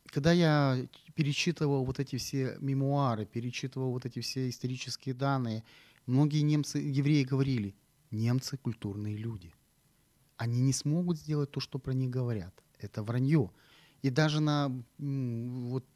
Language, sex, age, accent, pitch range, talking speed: Ukrainian, male, 30-49, native, 115-145 Hz, 130 wpm